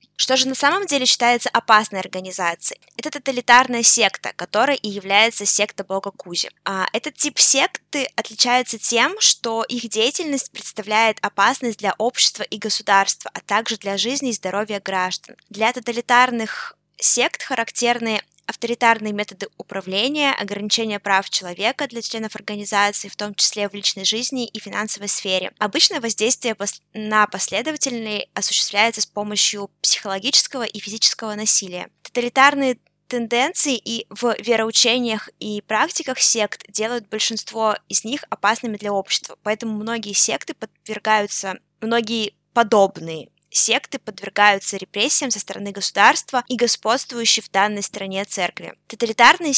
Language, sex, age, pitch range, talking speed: Russian, female, 20-39, 200-240 Hz, 125 wpm